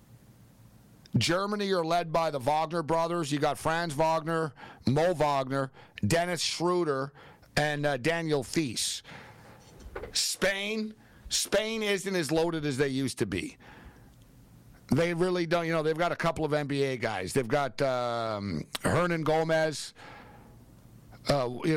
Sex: male